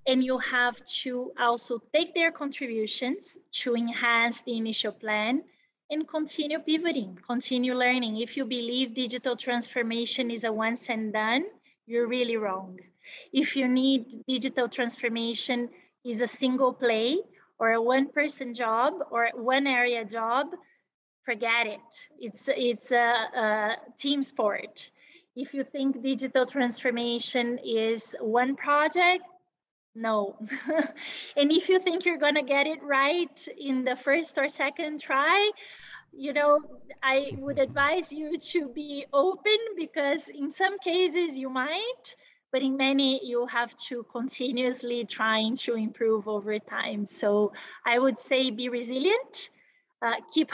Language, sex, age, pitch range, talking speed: English, female, 20-39, 235-295 Hz, 140 wpm